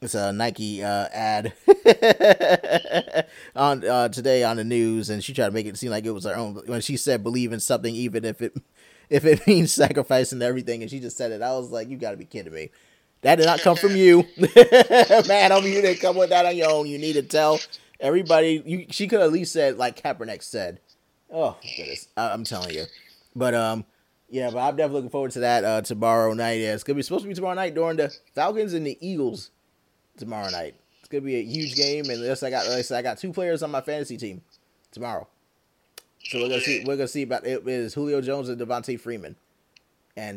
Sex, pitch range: male, 115-145 Hz